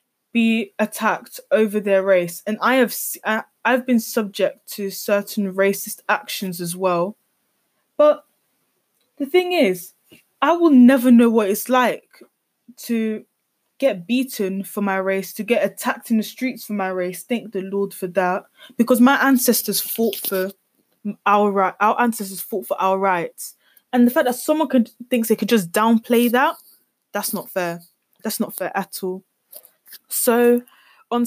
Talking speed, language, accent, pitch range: 160 wpm, English, British, 195-240 Hz